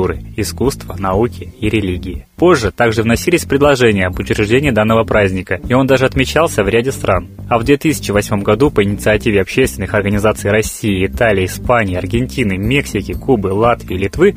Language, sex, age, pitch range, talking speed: Russian, male, 20-39, 100-125 Hz, 145 wpm